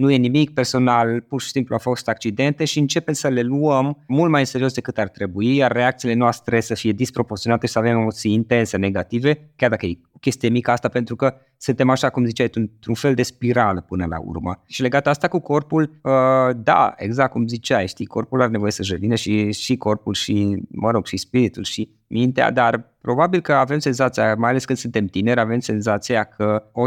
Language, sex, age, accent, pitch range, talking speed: Romanian, male, 20-39, native, 110-135 Hz, 205 wpm